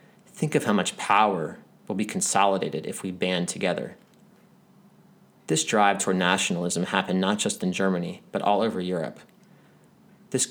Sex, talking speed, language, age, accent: male, 150 wpm, English, 30-49, American